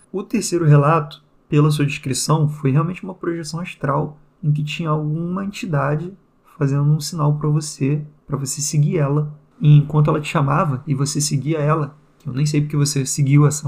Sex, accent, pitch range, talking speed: male, Brazilian, 135-155 Hz, 180 wpm